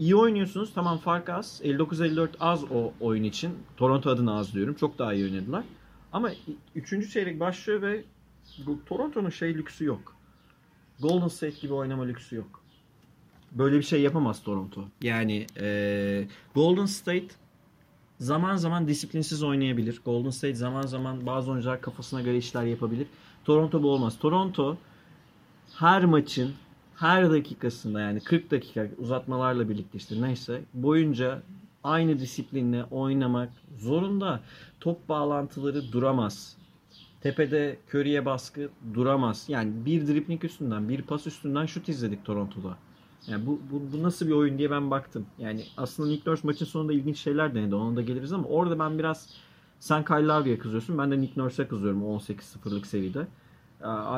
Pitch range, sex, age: 120-155 Hz, male, 40-59